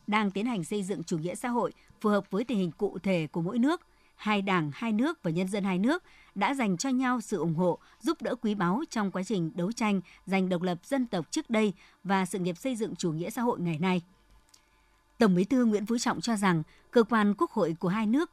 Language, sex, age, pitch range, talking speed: Vietnamese, male, 60-79, 180-250 Hz, 250 wpm